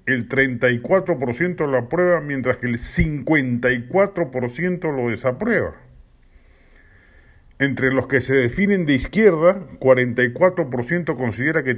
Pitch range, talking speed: 120-165 Hz, 100 wpm